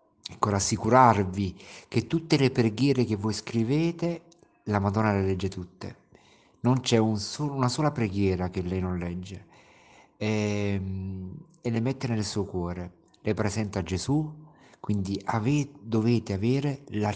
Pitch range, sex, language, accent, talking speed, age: 95-115 Hz, male, Italian, native, 145 wpm, 50-69